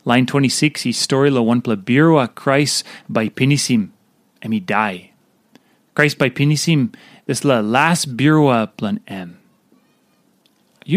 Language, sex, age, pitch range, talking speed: English, male, 30-49, 130-200 Hz, 125 wpm